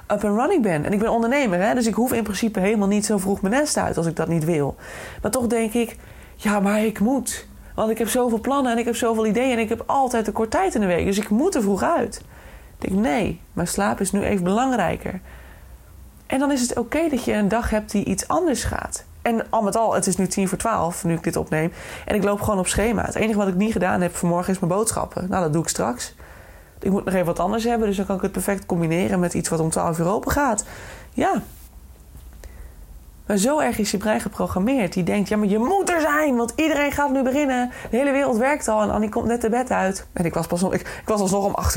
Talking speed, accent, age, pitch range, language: 265 wpm, Dutch, 20-39, 180-235 Hz, Dutch